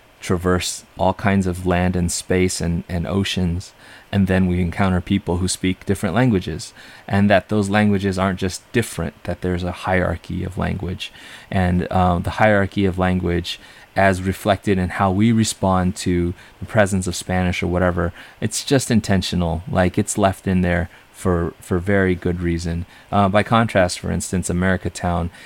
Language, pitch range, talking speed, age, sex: English, 90-100 Hz, 165 wpm, 20-39, male